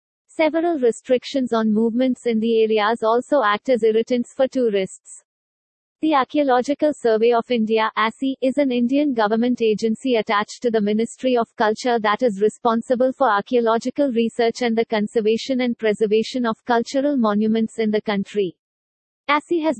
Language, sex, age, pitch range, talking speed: English, female, 50-69, 220-260 Hz, 150 wpm